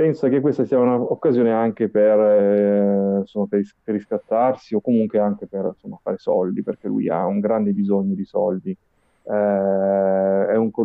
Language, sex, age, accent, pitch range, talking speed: Italian, male, 30-49, native, 100-130 Hz, 165 wpm